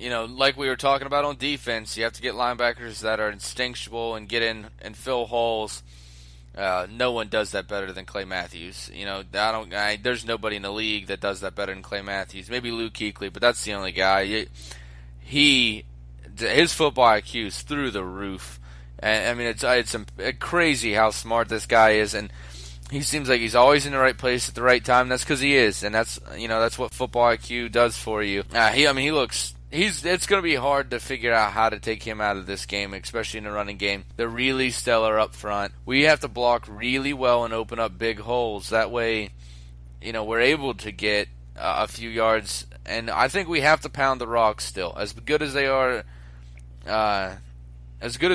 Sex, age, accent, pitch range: male, 20-39, American, 100-125 Hz